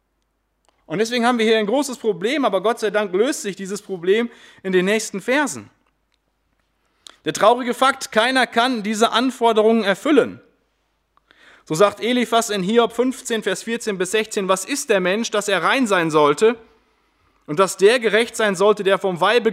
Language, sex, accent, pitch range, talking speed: German, male, German, 155-220 Hz, 170 wpm